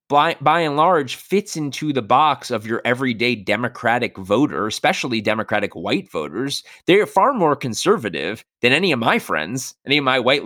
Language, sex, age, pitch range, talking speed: English, male, 20-39, 115-150 Hz, 180 wpm